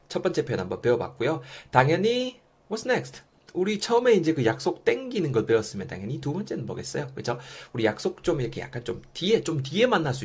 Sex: male